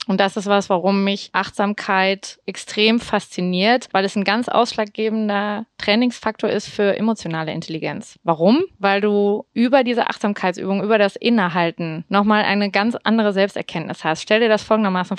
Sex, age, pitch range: female, 20-39, 190-220 Hz